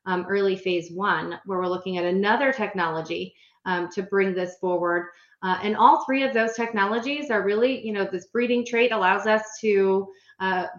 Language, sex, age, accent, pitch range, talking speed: English, female, 30-49, American, 185-210 Hz, 185 wpm